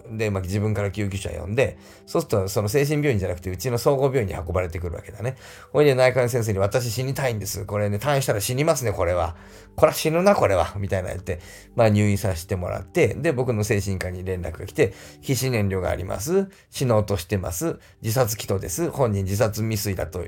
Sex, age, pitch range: male, 40-59, 95-125 Hz